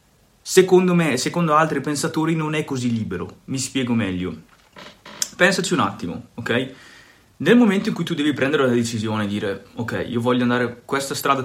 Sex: male